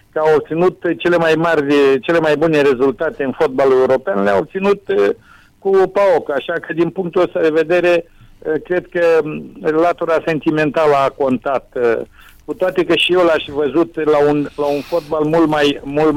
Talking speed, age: 165 wpm, 50-69